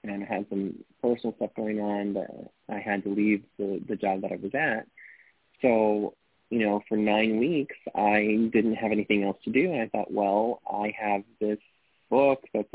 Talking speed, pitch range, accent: 200 wpm, 100-120 Hz, American